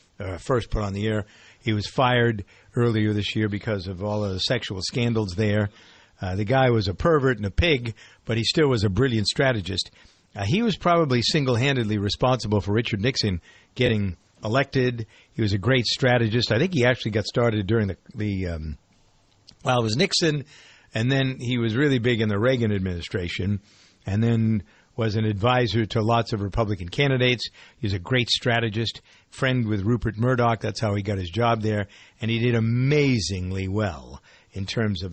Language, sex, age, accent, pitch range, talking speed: English, male, 50-69, American, 100-125 Hz, 190 wpm